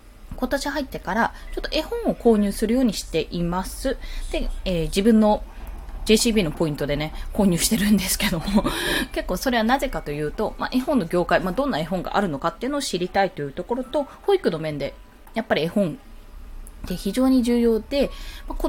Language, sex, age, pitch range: Japanese, female, 20-39, 180-275 Hz